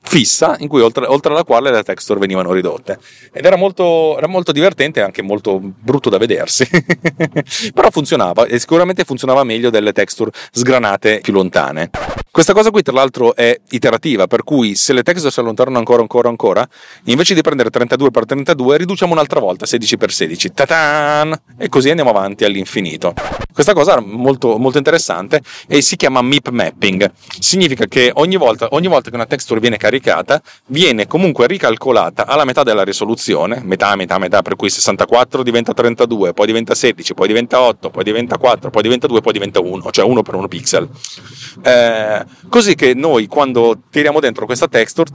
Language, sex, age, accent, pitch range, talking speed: Italian, male, 30-49, native, 115-155 Hz, 180 wpm